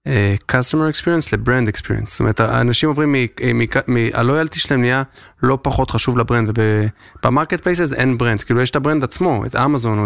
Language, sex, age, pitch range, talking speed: Hebrew, male, 20-39, 115-135 Hz, 190 wpm